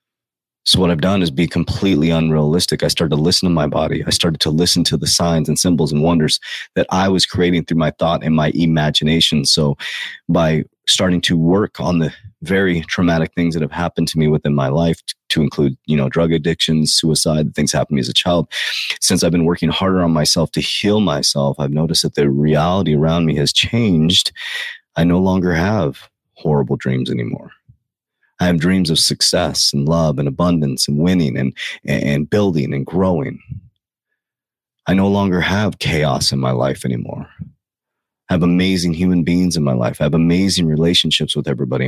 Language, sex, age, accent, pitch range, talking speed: English, male, 30-49, American, 75-90 Hz, 190 wpm